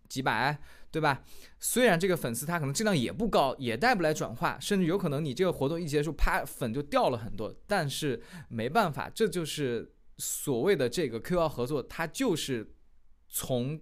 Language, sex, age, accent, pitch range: Chinese, male, 20-39, native, 135-200 Hz